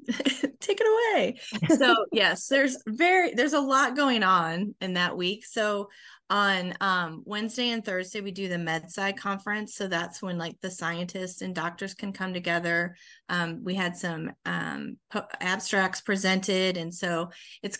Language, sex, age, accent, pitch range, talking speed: English, female, 30-49, American, 175-205 Hz, 160 wpm